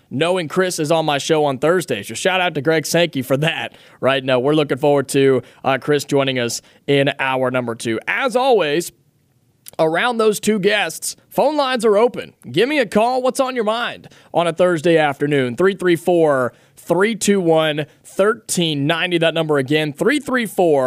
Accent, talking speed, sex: American, 160 wpm, male